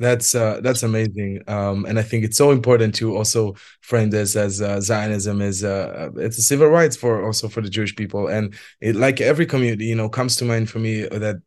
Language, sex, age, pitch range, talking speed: English, male, 20-39, 110-125 Hz, 225 wpm